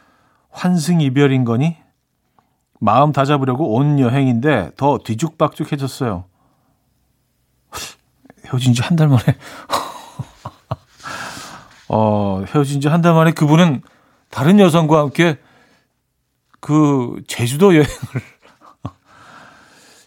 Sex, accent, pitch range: male, native, 120-160 Hz